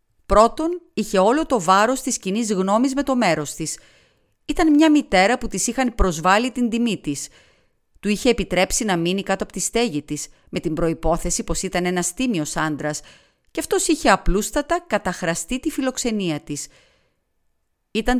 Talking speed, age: 160 wpm, 40-59